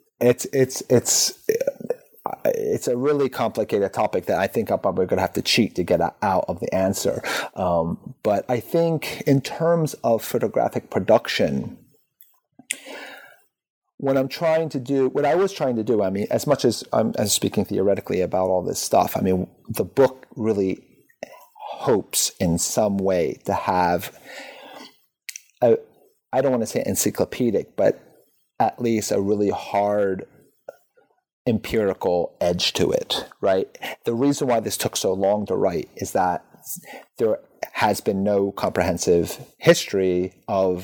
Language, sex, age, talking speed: English, male, 30-49, 150 wpm